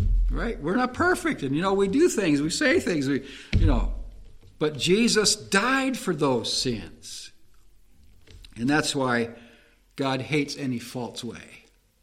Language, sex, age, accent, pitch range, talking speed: English, male, 60-79, American, 125-175 Hz, 150 wpm